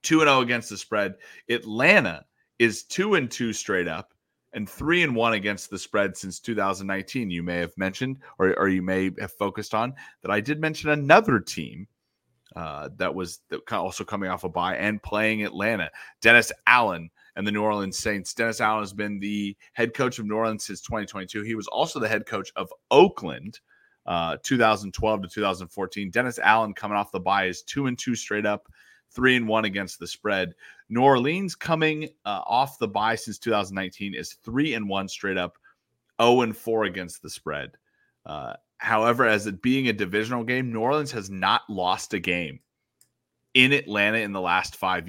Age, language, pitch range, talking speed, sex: 30-49, English, 95-120 Hz, 190 wpm, male